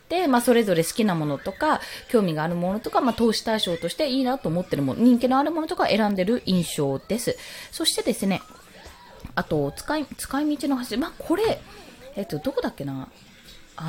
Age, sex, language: 20-39, female, Japanese